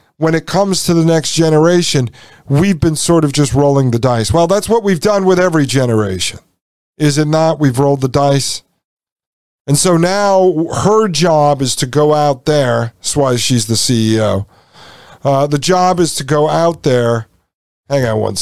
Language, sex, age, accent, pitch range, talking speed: English, male, 50-69, American, 115-160 Hz, 180 wpm